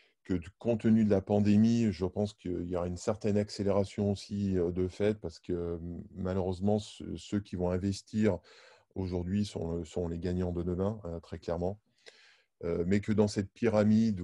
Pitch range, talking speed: 90-105 Hz, 175 wpm